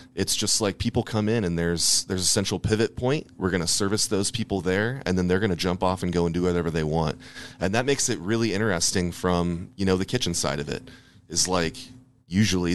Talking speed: 240 wpm